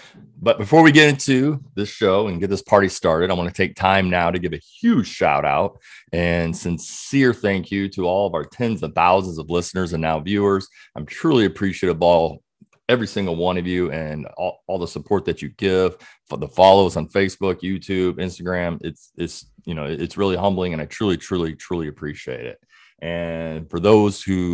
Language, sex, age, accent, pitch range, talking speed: English, male, 30-49, American, 85-105 Hz, 205 wpm